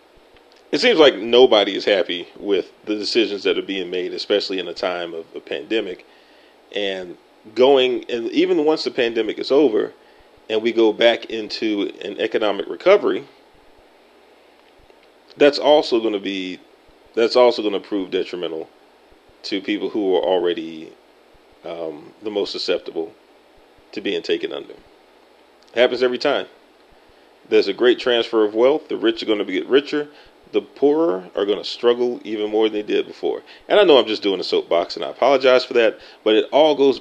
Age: 40-59